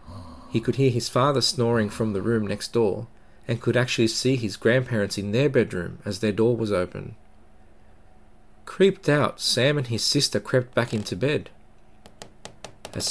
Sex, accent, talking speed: male, Australian, 165 wpm